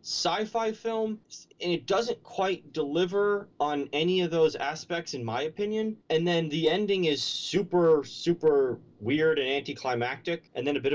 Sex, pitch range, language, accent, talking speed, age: male, 120-170 Hz, English, American, 160 wpm, 30-49